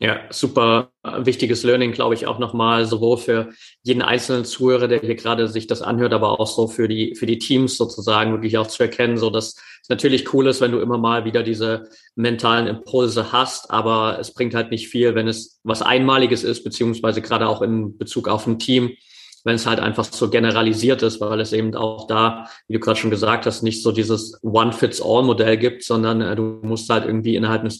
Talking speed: 205 wpm